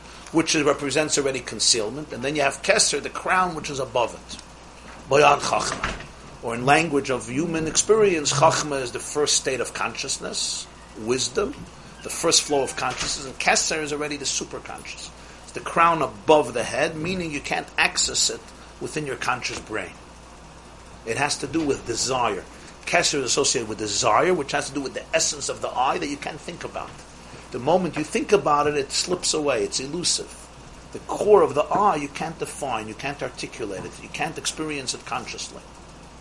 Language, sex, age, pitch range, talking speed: English, male, 50-69, 130-175 Hz, 185 wpm